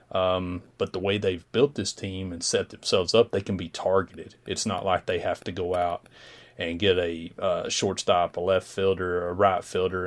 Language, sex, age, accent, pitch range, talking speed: English, male, 30-49, American, 90-100 Hz, 210 wpm